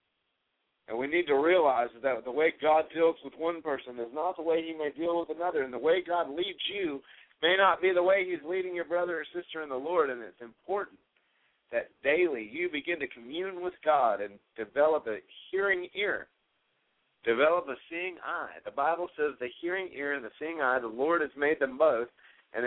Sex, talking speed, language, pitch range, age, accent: male, 210 wpm, English, 125-180 Hz, 50-69, American